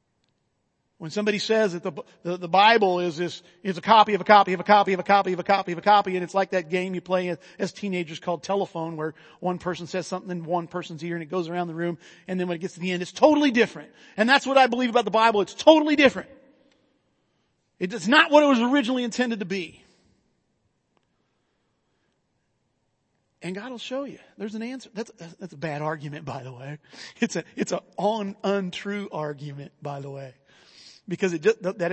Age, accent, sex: 40-59, American, male